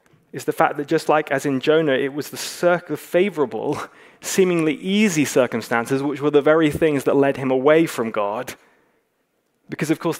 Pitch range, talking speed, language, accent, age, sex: 130-160 Hz, 180 wpm, English, British, 20-39, male